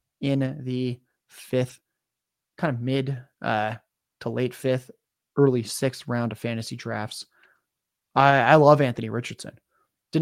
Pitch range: 130-165 Hz